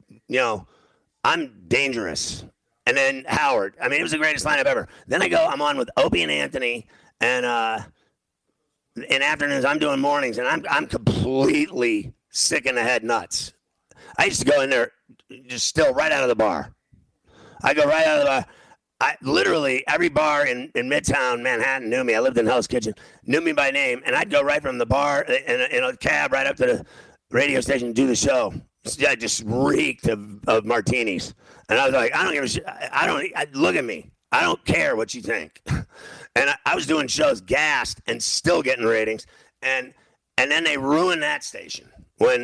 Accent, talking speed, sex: American, 210 wpm, male